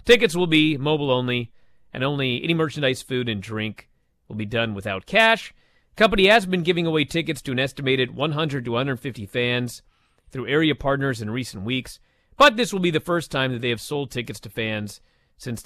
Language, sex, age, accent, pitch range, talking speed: English, male, 40-59, American, 125-195 Hz, 200 wpm